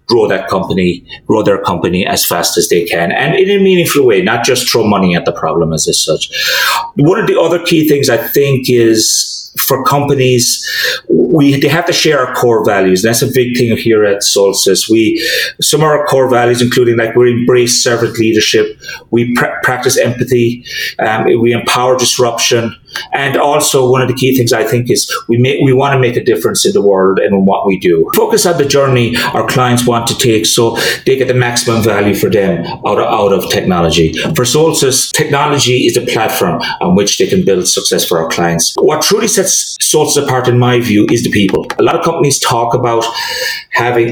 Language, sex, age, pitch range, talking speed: English, male, 30-49, 115-150 Hz, 205 wpm